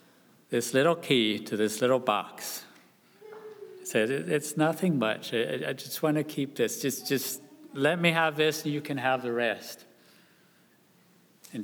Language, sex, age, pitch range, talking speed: English, male, 60-79, 110-165 Hz, 155 wpm